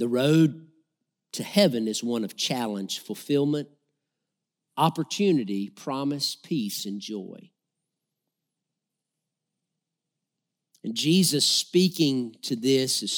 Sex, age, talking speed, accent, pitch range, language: male, 50-69, 90 wpm, American, 155-215 Hz, English